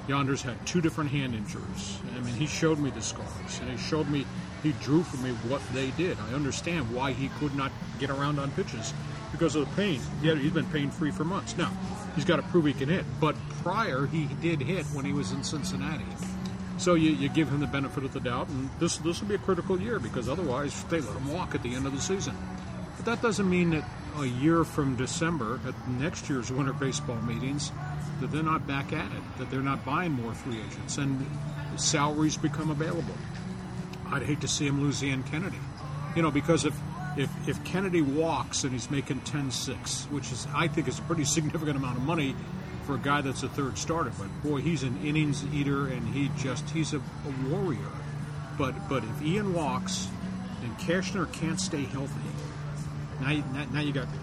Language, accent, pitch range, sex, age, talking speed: English, American, 135-160 Hz, male, 40-59, 210 wpm